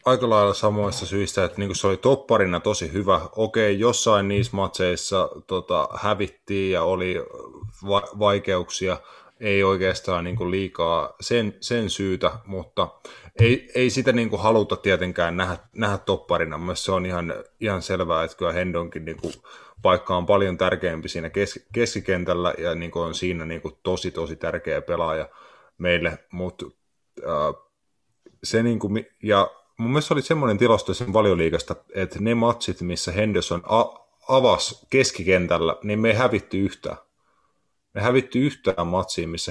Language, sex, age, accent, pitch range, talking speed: Finnish, male, 30-49, native, 90-105 Hz, 145 wpm